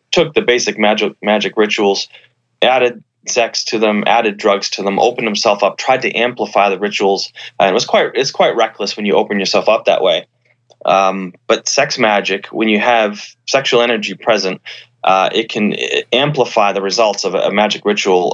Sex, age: male, 20-39